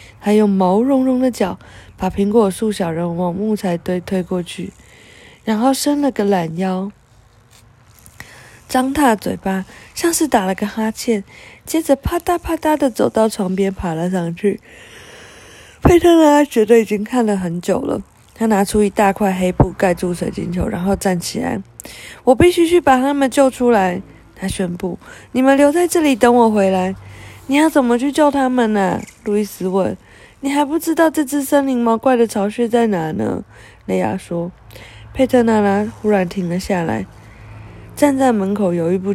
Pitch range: 185-255 Hz